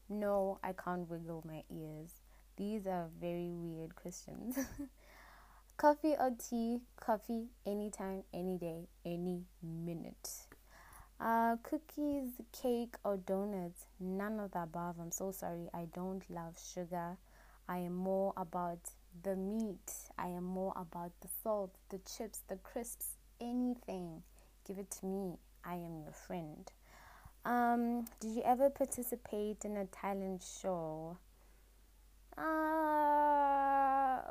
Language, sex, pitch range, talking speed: English, female, 175-230 Hz, 125 wpm